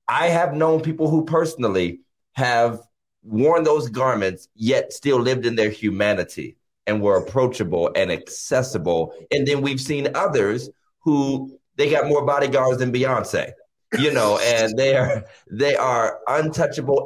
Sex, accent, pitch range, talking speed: male, American, 115-155 Hz, 145 wpm